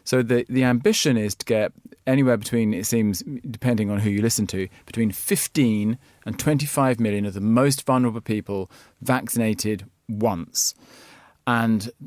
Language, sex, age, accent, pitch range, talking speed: English, male, 40-59, British, 105-125 Hz, 150 wpm